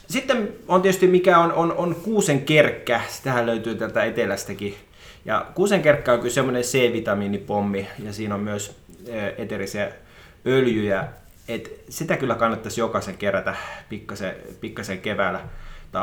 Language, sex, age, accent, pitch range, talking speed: Finnish, male, 20-39, native, 100-140 Hz, 135 wpm